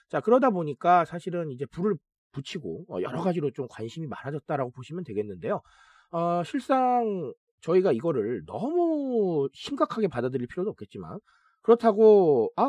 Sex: male